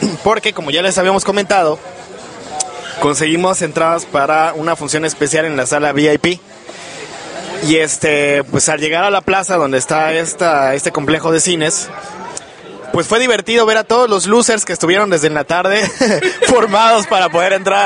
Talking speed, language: 160 wpm, English